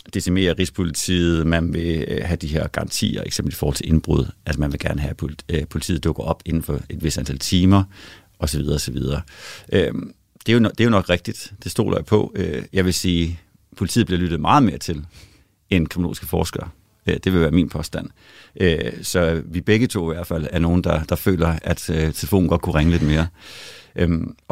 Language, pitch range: Danish, 85-100 Hz